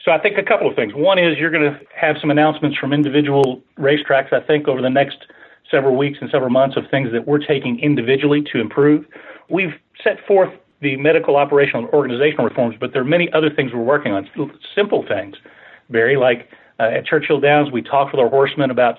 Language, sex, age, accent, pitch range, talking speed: English, male, 40-59, American, 125-145 Hz, 215 wpm